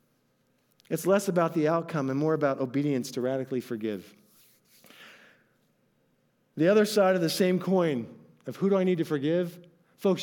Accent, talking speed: American, 160 wpm